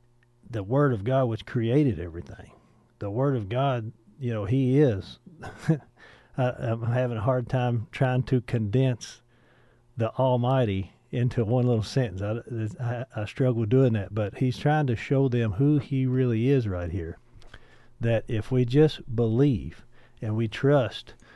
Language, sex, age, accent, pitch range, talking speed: English, male, 50-69, American, 110-130 Hz, 155 wpm